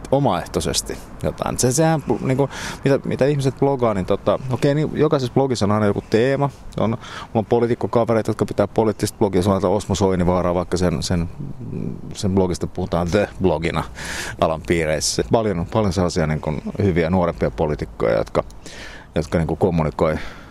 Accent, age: native, 30-49